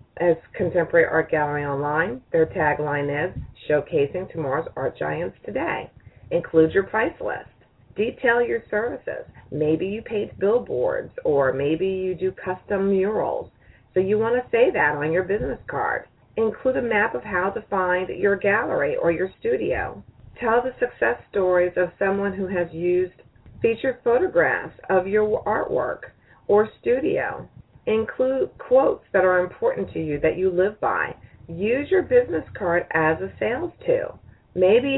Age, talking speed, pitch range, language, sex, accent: 40-59, 150 wpm, 175-235 Hz, English, female, American